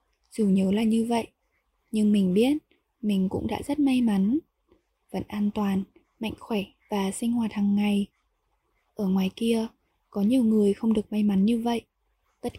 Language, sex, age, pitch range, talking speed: Vietnamese, female, 10-29, 195-235 Hz, 175 wpm